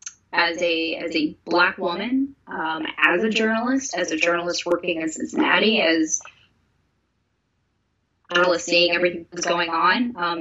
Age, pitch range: 20-39, 170-205 Hz